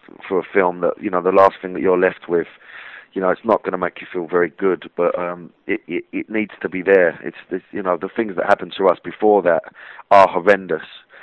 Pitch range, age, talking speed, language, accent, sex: 95-115 Hz, 30-49, 250 wpm, English, British, male